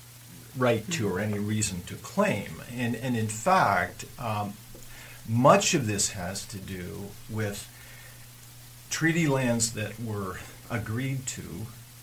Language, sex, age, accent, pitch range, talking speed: English, male, 50-69, American, 100-120 Hz, 125 wpm